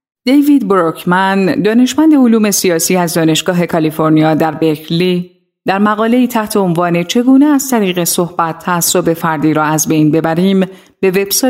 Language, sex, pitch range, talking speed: Persian, female, 165-225 Hz, 140 wpm